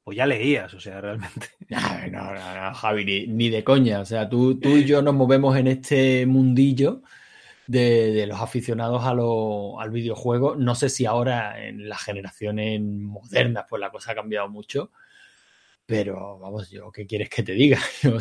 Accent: Spanish